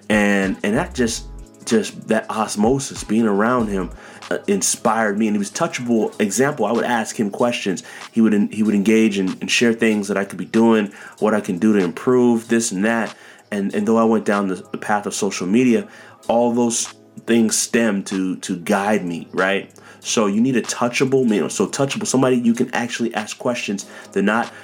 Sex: male